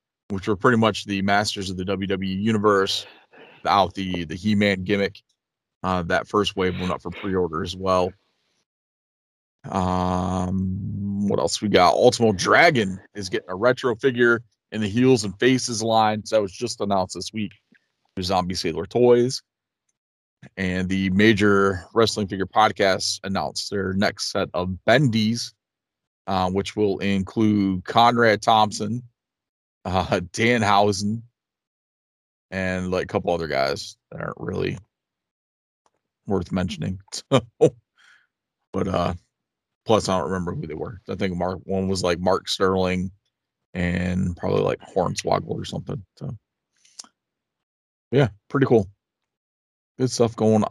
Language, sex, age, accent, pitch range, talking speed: English, male, 30-49, American, 95-110 Hz, 135 wpm